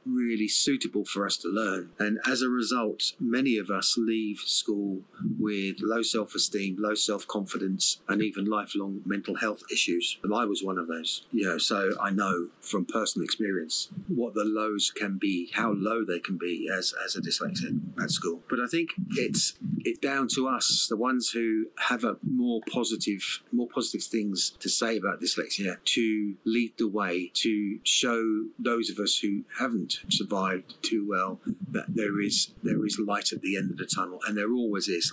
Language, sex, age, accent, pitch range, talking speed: English, male, 30-49, British, 105-170 Hz, 185 wpm